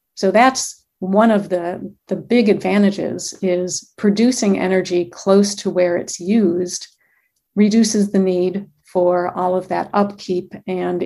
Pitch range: 185-205 Hz